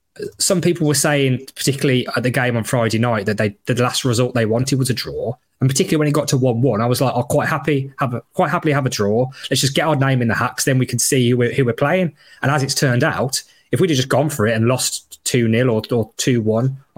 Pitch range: 120-145 Hz